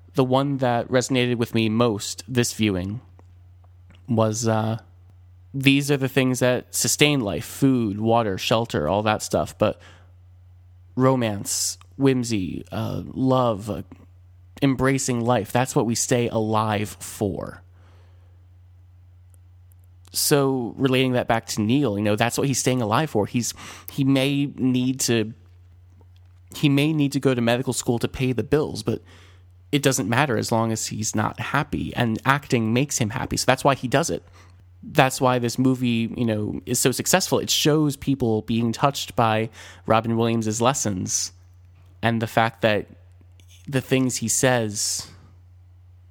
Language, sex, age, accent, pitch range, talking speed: English, male, 30-49, American, 90-125 Hz, 150 wpm